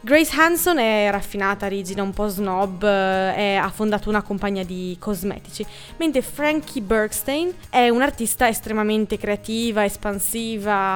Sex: female